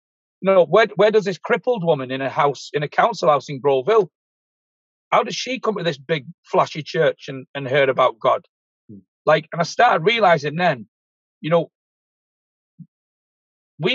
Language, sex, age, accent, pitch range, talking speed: English, male, 40-59, British, 140-190 Hz, 170 wpm